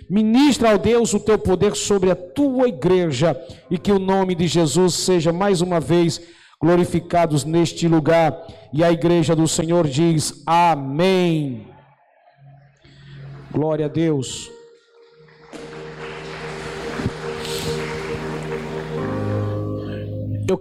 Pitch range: 140-200 Hz